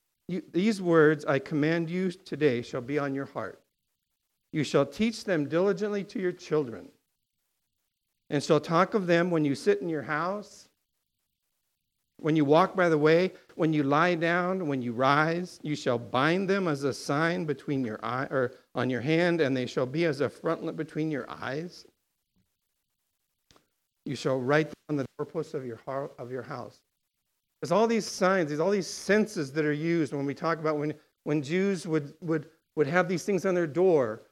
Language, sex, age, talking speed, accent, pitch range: English, male, 50-69, 190 wpm, American, 145-185 Hz